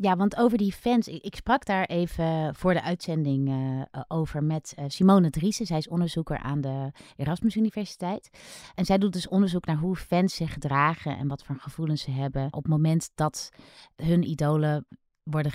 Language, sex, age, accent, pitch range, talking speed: Dutch, female, 30-49, Dutch, 145-180 Hz, 180 wpm